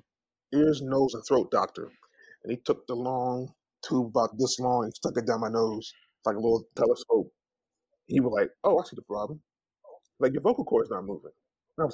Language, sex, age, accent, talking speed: English, male, 30-49, American, 205 wpm